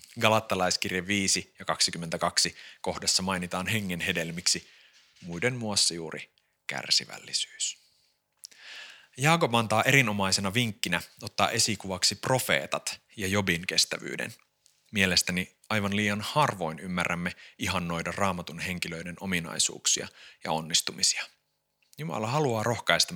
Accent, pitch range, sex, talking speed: native, 85-120 Hz, male, 95 wpm